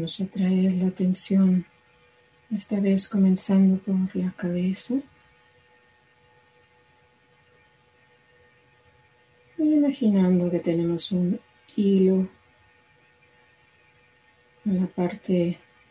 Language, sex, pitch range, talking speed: English, female, 120-195 Hz, 70 wpm